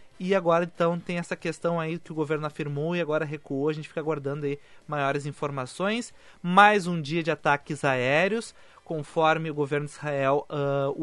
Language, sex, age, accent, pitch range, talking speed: Portuguese, male, 20-39, Brazilian, 140-170 Hz, 180 wpm